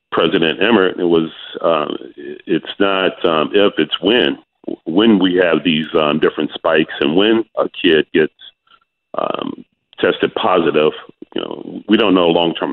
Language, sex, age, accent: English, male, 40-59, American